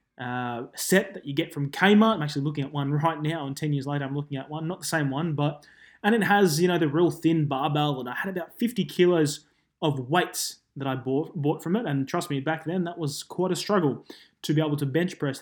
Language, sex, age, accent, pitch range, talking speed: English, male, 20-39, Australian, 140-180 Hz, 255 wpm